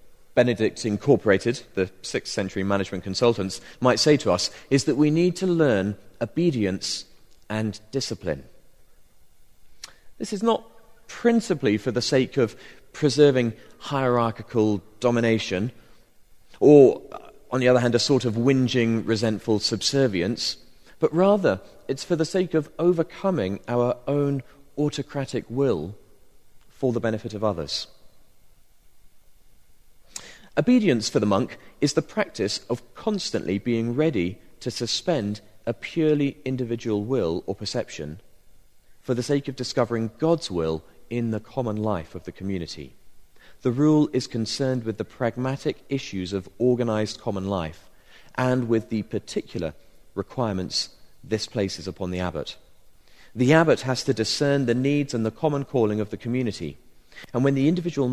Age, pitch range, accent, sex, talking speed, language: 40-59, 100-140 Hz, British, male, 135 wpm, English